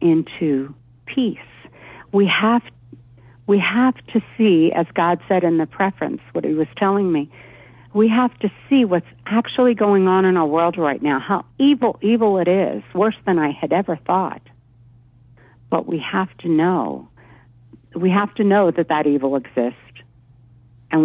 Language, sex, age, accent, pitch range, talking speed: English, female, 50-69, American, 130-195 Hz, 165 wpm